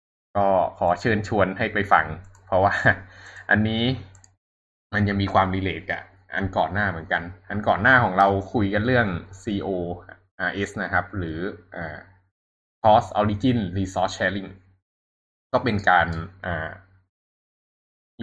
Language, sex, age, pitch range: Thai, male, 20-39, 90-105 Hz